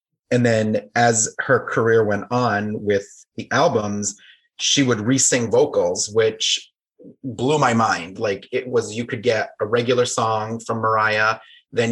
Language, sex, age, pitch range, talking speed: English, male, 30-49, 110-135 Hz, 150 wpm